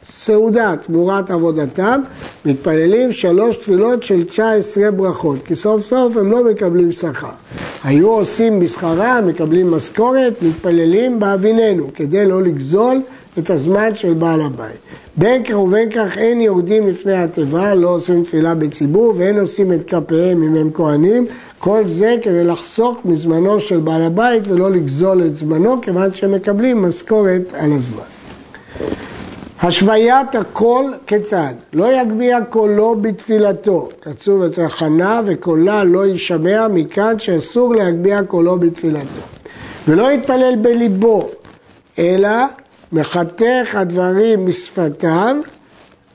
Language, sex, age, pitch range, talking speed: Hebrew, male, 60-79, 170-220 Hz, 120 wpm